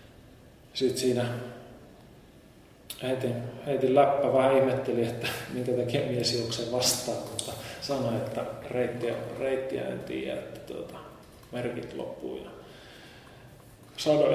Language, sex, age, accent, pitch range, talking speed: Finnish, male, 30-49, native, 120-145 Hz, 105 wpm